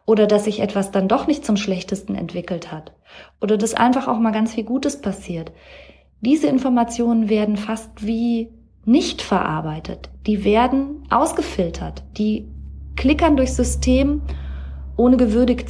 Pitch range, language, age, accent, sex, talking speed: 180-225 Hz, German, 30-49, German, female, 140 wpm